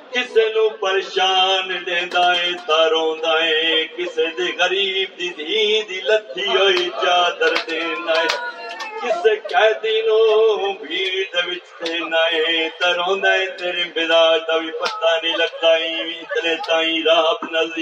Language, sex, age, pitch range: Urdu, male, 50-69, 160-215 Hz